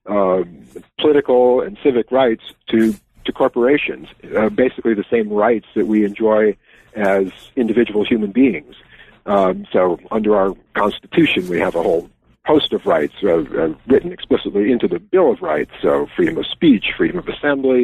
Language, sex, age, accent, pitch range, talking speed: English, male, 50-69, American, 100-125 Hz, 160 wpm